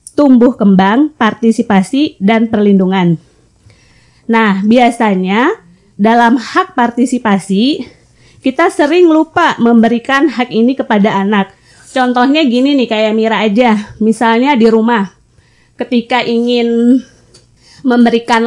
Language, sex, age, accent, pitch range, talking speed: Indonesian, female, 20-39, native, 215-265 Hz, 95 wpm